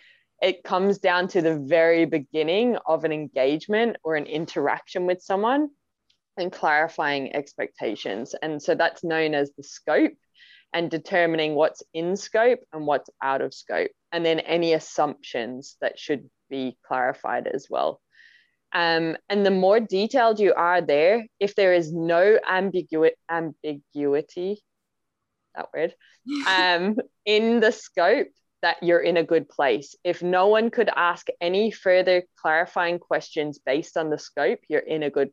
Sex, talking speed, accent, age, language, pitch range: female, 150 wpm, Australian, 20-39, English, 155-185 Hz